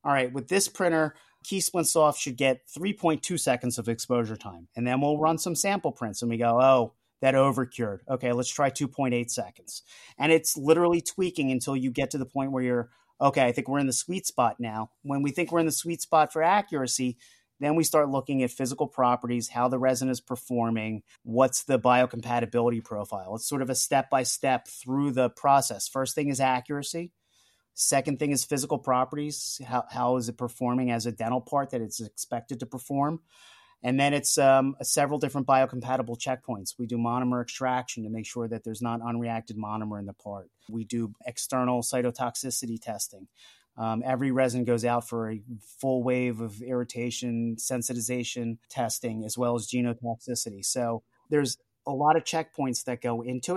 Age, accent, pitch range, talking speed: 30-49, American, 120-140 Hz, 185 wpm